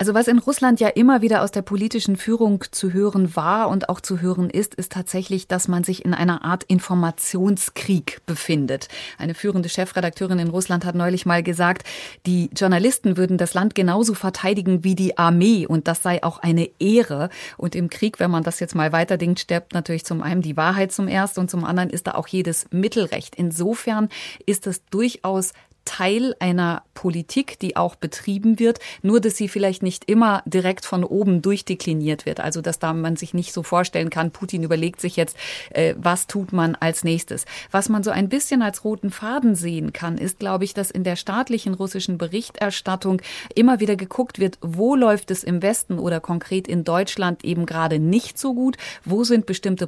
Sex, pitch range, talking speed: female, 175-205 Hz, 190 wpm